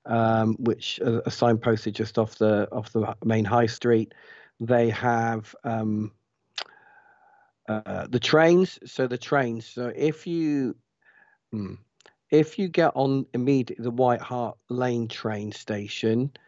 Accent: British